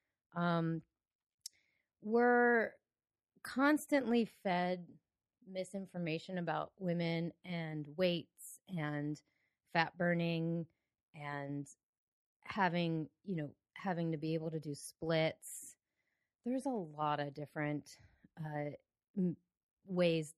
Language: English